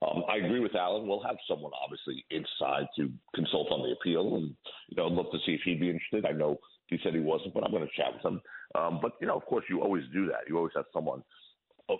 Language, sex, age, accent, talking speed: English, male, 50-69, American, 265 wpm